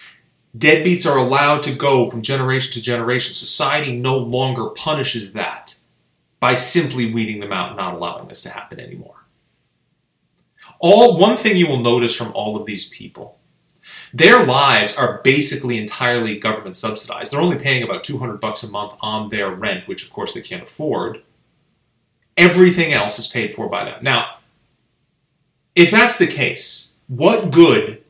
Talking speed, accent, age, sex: 160 wpm, American, 30-49, male